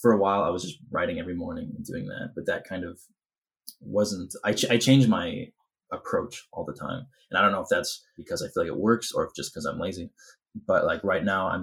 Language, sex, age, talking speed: English, male, 20-39, 255 wpm